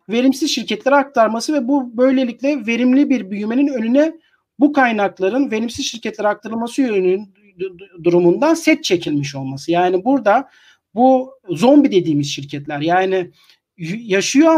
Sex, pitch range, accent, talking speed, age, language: male, 180-275 Hz, native, 115 wpm, 40-59, Turkish